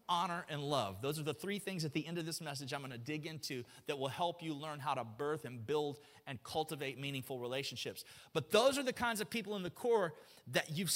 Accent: American